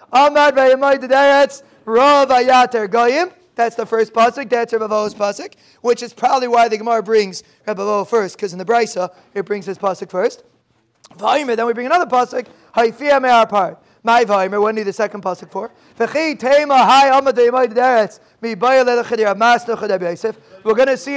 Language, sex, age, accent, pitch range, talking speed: English, male, 30-49, American, 220-275 Hz, 120 wpm